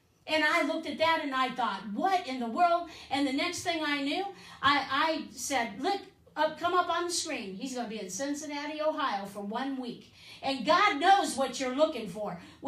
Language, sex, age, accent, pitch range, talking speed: English, female, 50-69, American, 250-310 Hz, 210 wpm